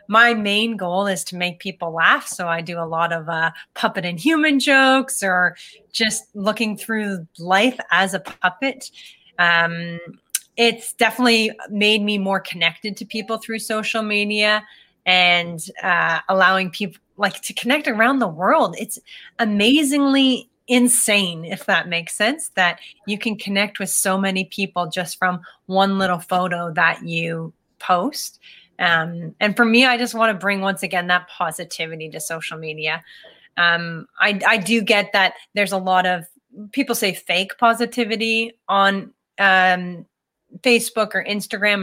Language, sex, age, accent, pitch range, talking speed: English, female, 30-49, American, 175-225 Hz, 155 wpm